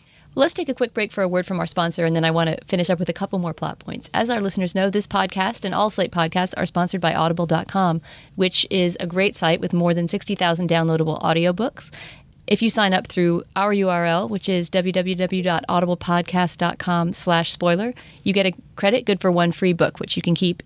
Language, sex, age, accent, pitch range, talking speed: English, female, 30-49, American, 165-190 Hz, 215 wpm